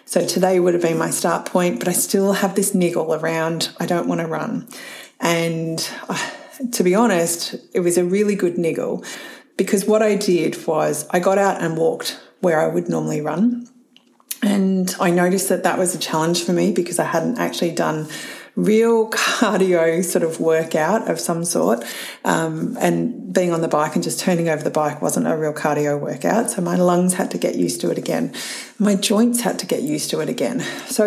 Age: 30-49